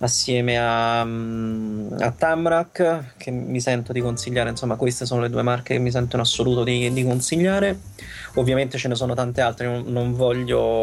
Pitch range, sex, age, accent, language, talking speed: 120-145 Hz, male, 20-39, native, Italian, 170 wpm